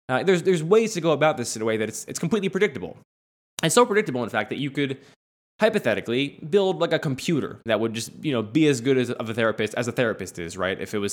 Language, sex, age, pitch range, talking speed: English, male, 20-39, 105-150 Hz, 265 wpm